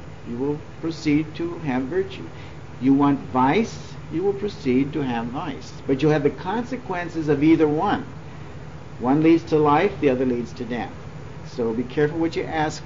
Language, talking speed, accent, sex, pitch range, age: English, 175 wpm, American, male, 135-170 Hz, 60-79